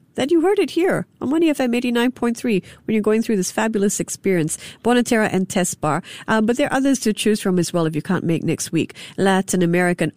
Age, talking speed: 50-69, 225 wpm